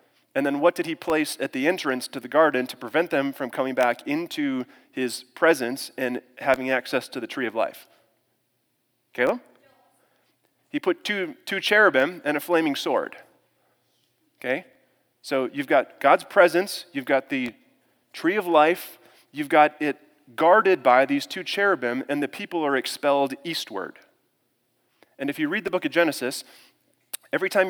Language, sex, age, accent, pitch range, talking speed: English, male, 30-49, American, 130-175 Hz, 165 wpm